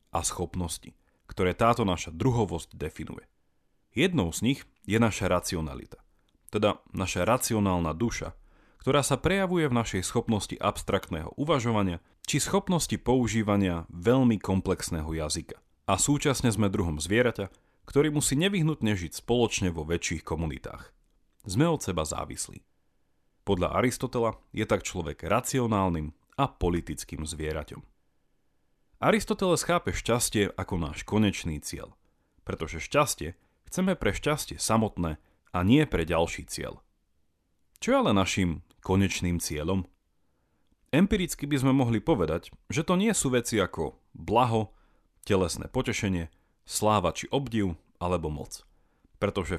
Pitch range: 85-120 Hz